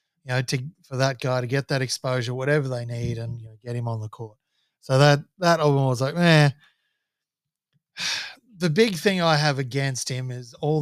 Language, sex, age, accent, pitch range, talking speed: English, male, 20-39, Australian, 125-160 Hz, 205 wpm